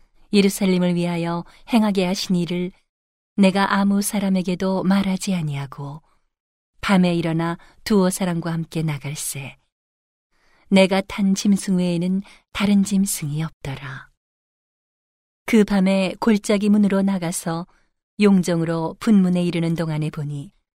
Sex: female